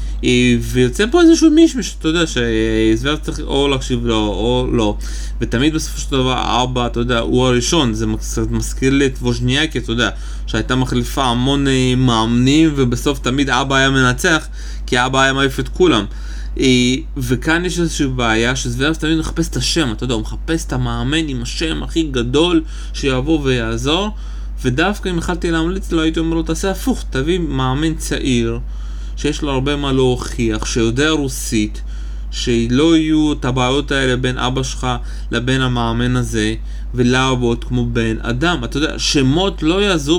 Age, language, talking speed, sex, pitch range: 20-39, Hebrew, 165 wpm, male, 120-155 Hz